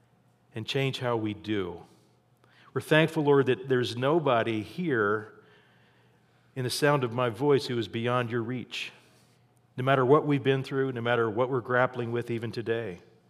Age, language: 40-59, English